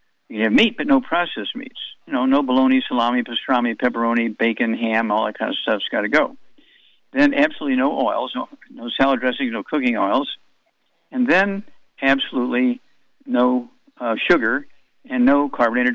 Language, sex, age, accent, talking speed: English, male, 60-79, American, 160 wpm